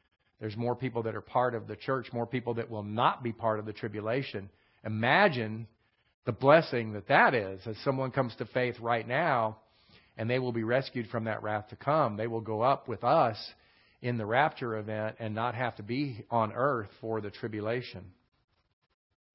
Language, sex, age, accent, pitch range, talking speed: English, male, 50-69, American, 110-135 Hz, 190 wpm